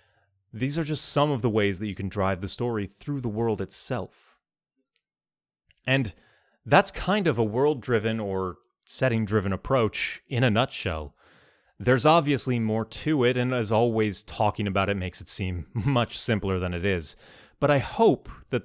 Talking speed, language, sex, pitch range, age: 165 wpm, English, male, 100-130 Hz, 30-49